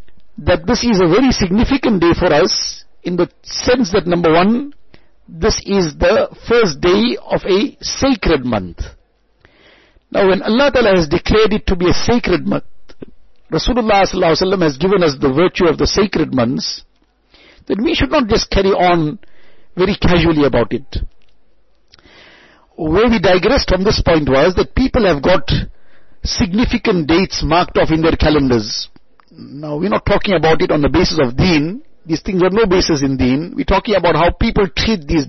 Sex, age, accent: male, 60-79, Indian